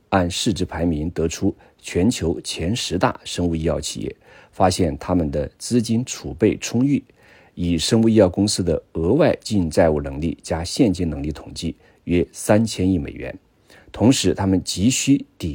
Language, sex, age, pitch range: Chinese, male, 50-69, 80-105 Hz